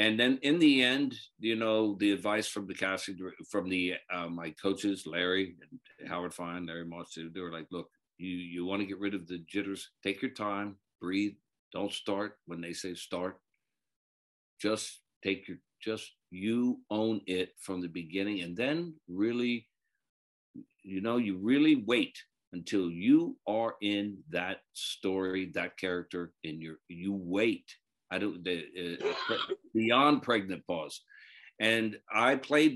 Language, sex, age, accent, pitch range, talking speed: English, male, 60-79, American, 95-120 Hz, 150 wpm